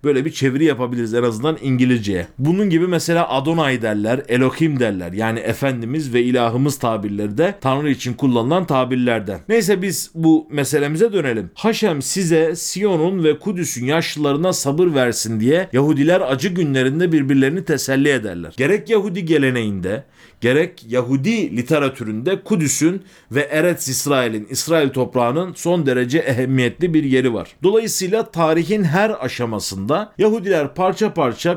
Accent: native